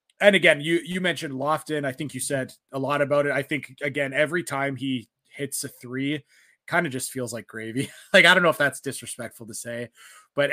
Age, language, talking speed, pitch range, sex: 20-39, English, 220 wpm, 135-155 Hz, male